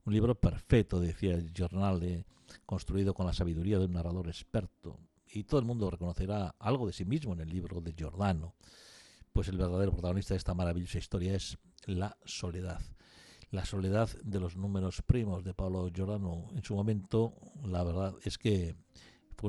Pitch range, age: 90-105 Hz, 60-79